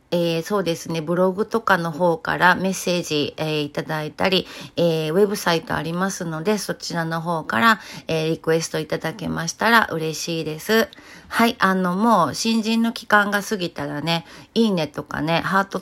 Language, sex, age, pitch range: Japanese, female, 40-59, 155-195 Hz